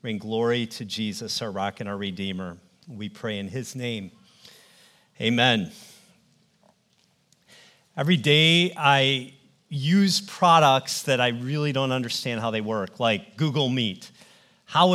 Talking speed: 130 wpm